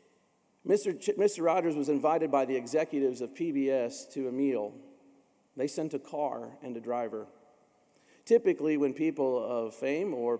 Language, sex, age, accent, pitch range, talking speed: English, male, 40-59, American, 125-160 Hz, 150 wpm